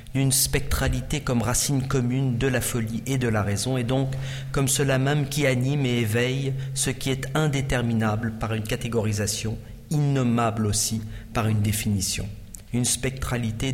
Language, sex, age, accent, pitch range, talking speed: German, male, 50-69, French, 110-125 Hz, 155 wpm